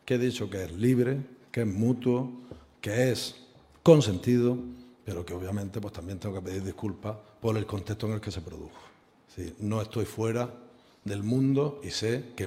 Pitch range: 110-160 Hz